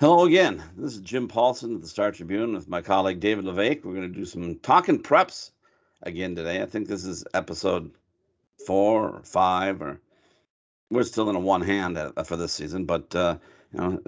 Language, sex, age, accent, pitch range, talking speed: English, male, 50-69, American, 90-100 Hz, 195 wpm